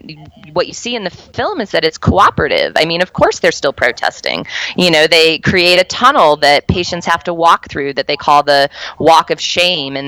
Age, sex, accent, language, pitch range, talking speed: 20-39, female, American, English, 140-175 Hz, 220 wpm